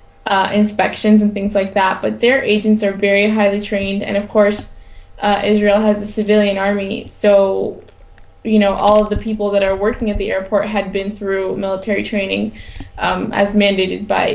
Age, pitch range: 10-29, 195-220 Hz